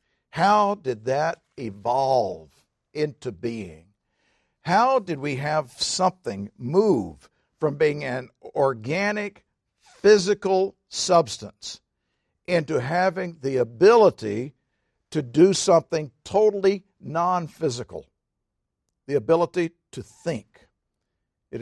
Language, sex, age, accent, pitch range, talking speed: English, male, 50-69, American, 130-195 Hz, 90 wpm